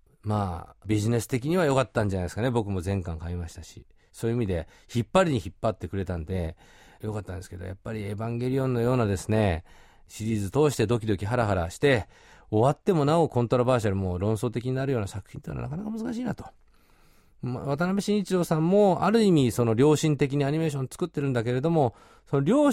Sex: male